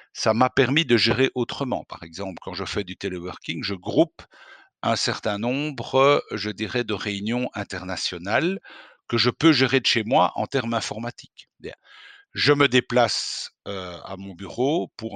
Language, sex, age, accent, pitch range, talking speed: English, male, 50-69, French, 105-135 Hz, 165 wpm